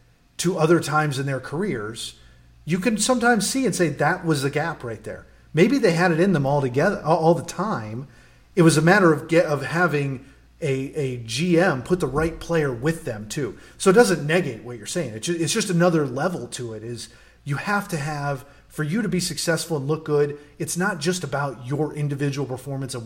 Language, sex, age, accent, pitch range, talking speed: English, male, 30-49, American, 130-170 Hz, 210 wpm